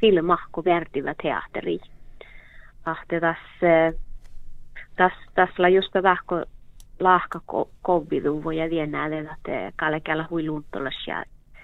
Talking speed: 80 wpm